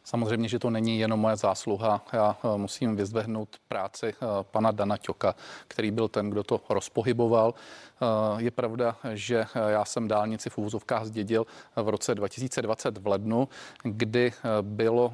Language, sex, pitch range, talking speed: Czech, male, 110-120 Hz, 145 wpm